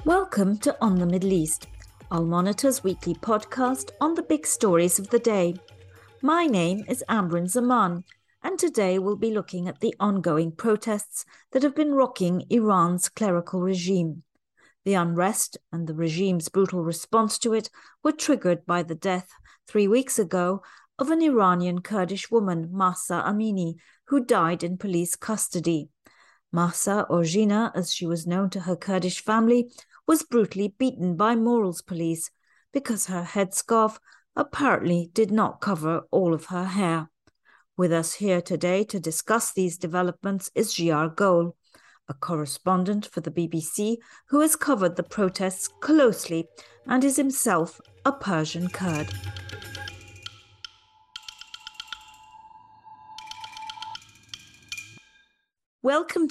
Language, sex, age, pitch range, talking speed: English, female, 40-59, 175-240 Hz, 130 wpm